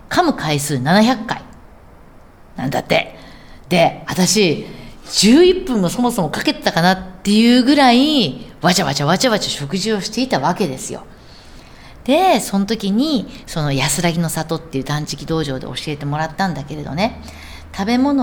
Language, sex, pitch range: Japanese, female, 150-230 Hz